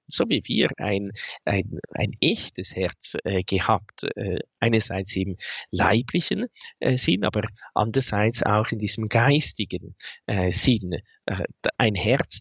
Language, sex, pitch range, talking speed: German, male, 95-120 Hz, 105 wpm